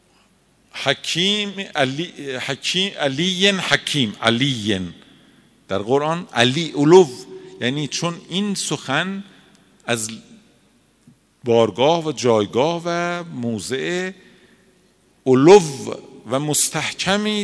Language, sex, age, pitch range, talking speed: Persian, male, 50-69, 120-185 Hz, 85 wpm